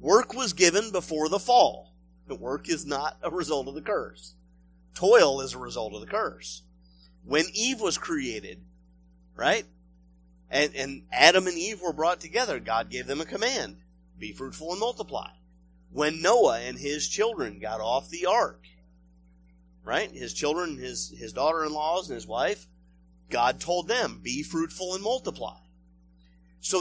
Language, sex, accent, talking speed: English, male, American, 155 wpm